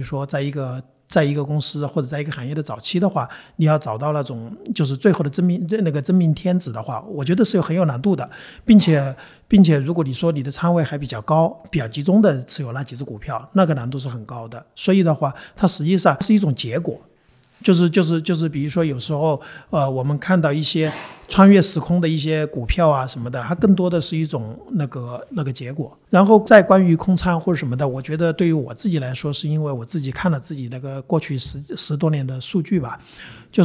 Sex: male